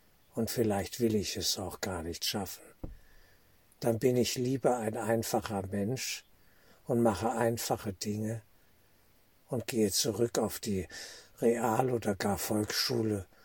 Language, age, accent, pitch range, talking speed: German, 60-79, German, 95-115 Hz, 130 wpm